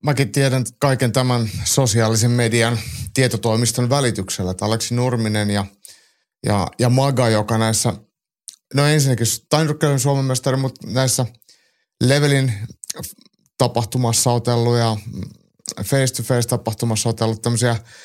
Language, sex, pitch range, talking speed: Finnish, male, 110-130 Hz, 115 wpm